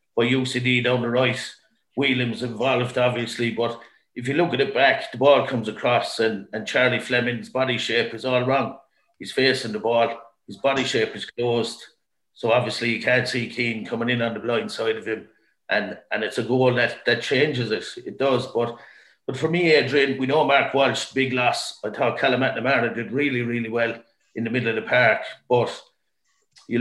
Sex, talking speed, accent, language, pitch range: male, 200 wpm, British, English, 115-130 Hz